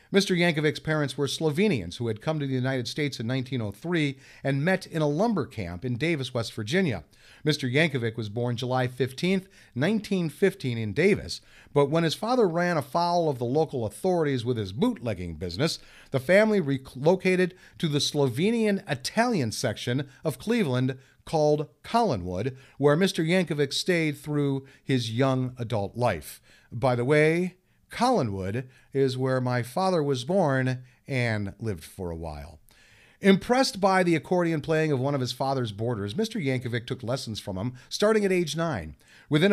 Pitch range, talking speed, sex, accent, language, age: 120-170 Hz, 160 wpm, male, American, English, 50-69